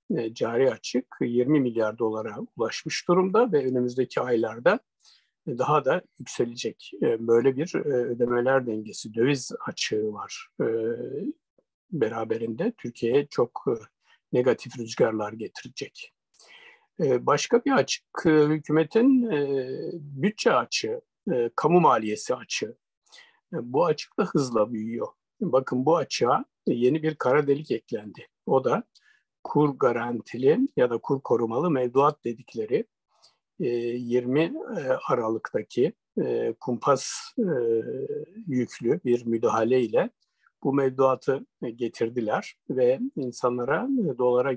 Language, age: Turkish, 60-79